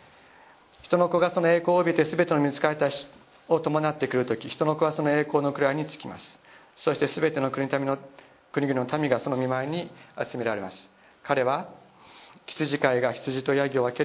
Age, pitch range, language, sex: 40-59, 125-145 Hz, Japanese, male